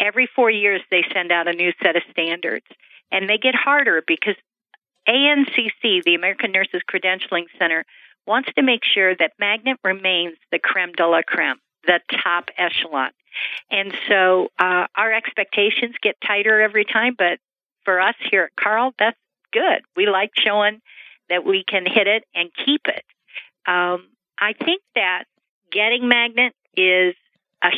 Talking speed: 160 wpm